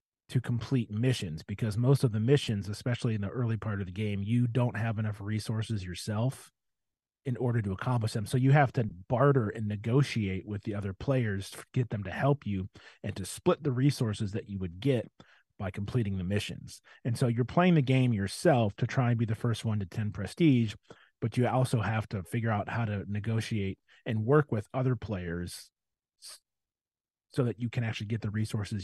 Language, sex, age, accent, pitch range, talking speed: English, male, 30-49, American, 100-120 Hz, 200 wpm